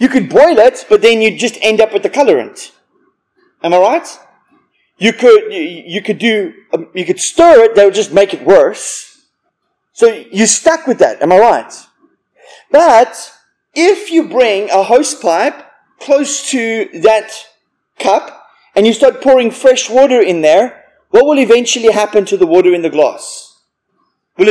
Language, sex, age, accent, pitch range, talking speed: English, male, 30-49, Australian, 210-290 Hz, 170 wpm